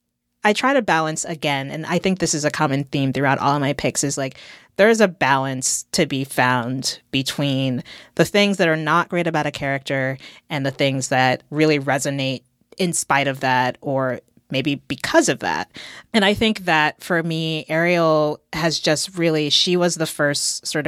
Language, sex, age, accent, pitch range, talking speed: English, female, 30-49, American, 135-170 Hz, 190 wpm